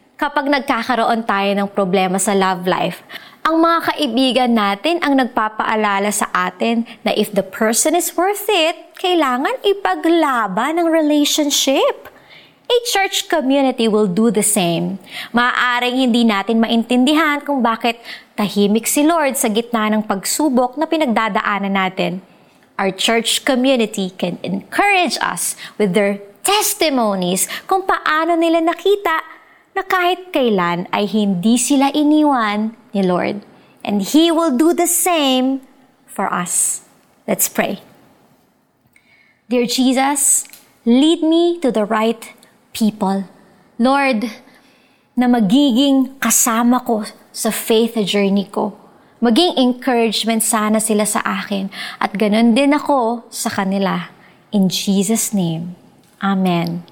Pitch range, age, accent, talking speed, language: 210-290 Hz, 20-39, native, 120 wpm, Filipino